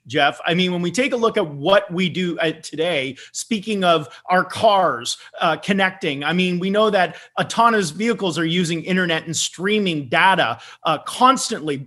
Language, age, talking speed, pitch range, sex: English, 30-49, 175 wpm, 170-225 Hz, male